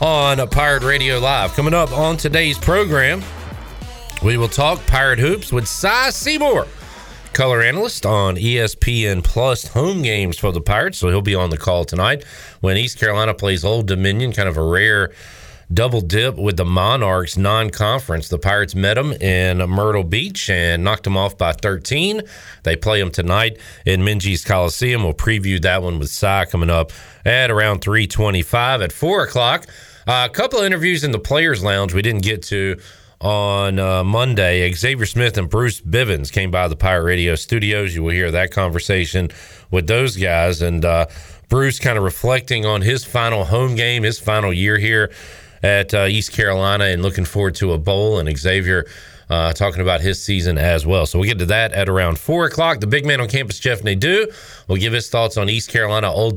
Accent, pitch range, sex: American, 95-115 Hz, male